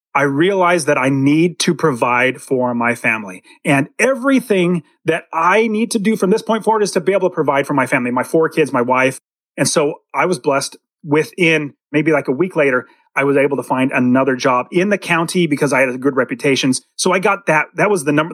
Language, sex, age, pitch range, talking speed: English, male, 30-49, 135-195 Hz, 230 wpm